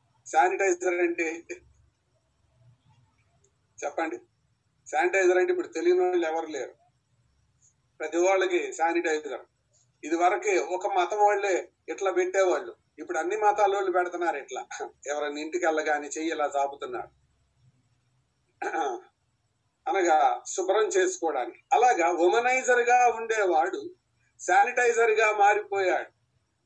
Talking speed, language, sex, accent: 90 wpm, Telugu, male, native